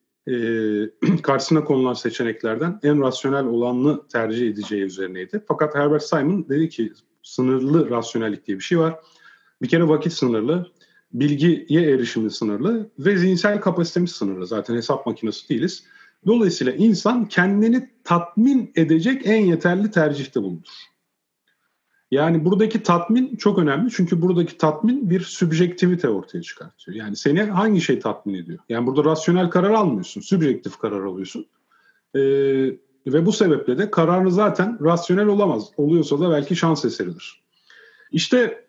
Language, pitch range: Turkish, 135-185 Hz